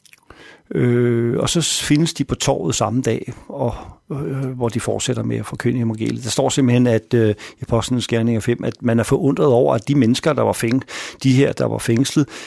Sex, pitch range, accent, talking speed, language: male, 110-130 Hz, native, 205 wpm, Danish